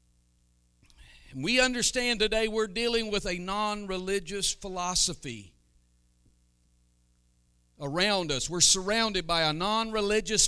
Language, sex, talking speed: English, male, 90 wpm